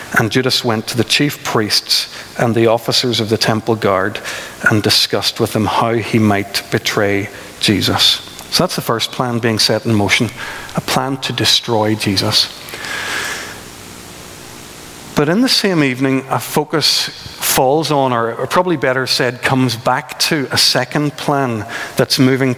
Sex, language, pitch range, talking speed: male, English, 110-135 Hz, 155 wpm